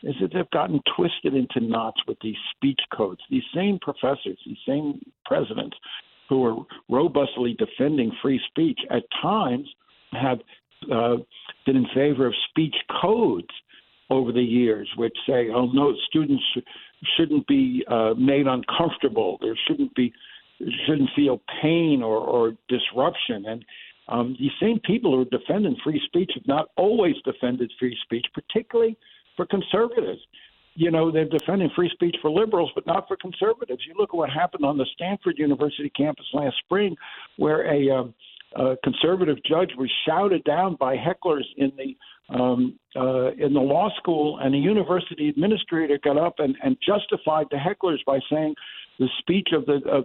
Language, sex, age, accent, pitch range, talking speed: English, male, 60-79, American, 130-200 Hz, 165 wpm